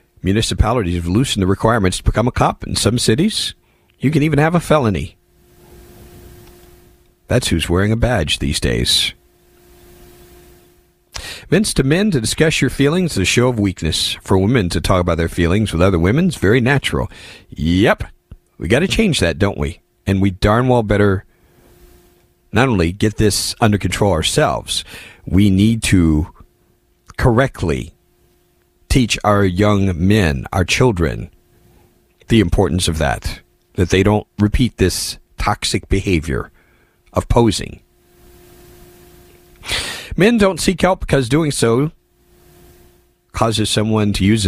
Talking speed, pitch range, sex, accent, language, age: 140 wpm, 90-115 Hz, male, American, English, 50-69